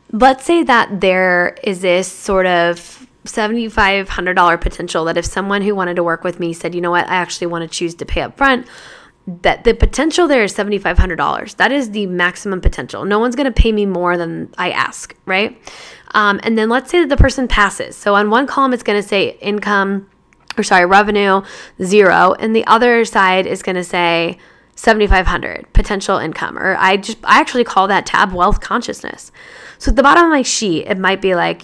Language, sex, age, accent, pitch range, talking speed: English, female, 10-29, American, 185-235 Hz, 205 wpm